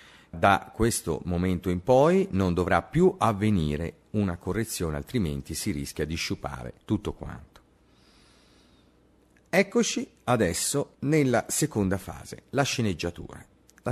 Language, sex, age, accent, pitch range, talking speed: Italian, male, 40-59, native, 75-115 Hz, 110 wpm